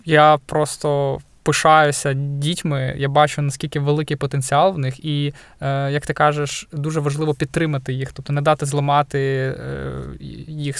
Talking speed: 135 wpm